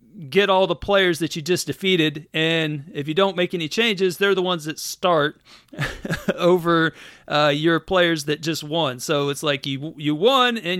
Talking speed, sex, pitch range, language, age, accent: 190 wpm, male, 140-180 Hz, English, 40-59, American